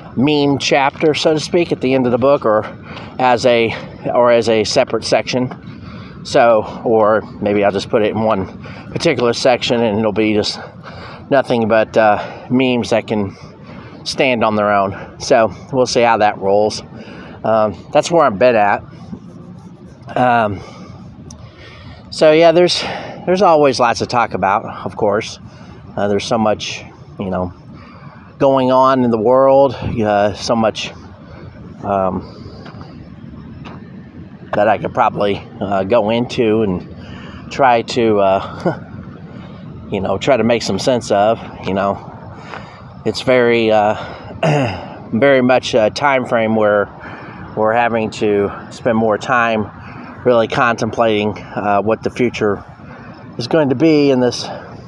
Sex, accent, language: male, American, English